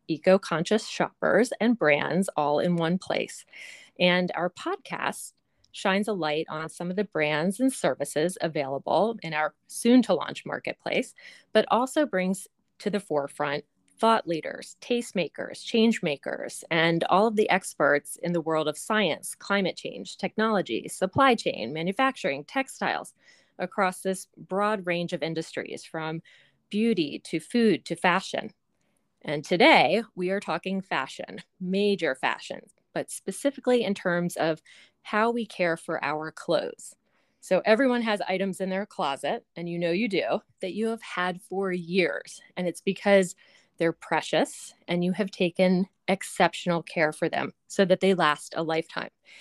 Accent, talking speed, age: American, 145 wpm, 30-49